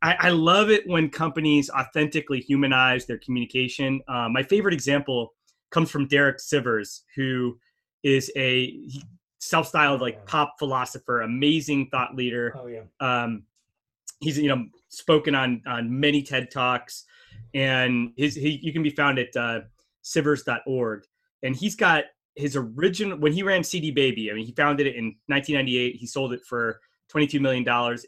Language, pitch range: English, 120-150 Hz